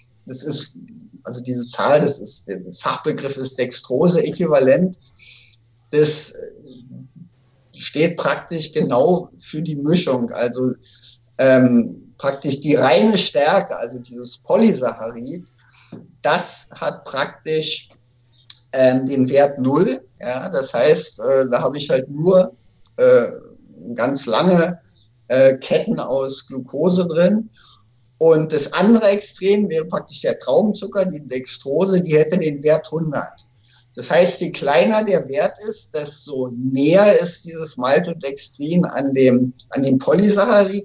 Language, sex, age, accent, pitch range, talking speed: German, male, 50-69, German, 125-180 Hz, 120 wpm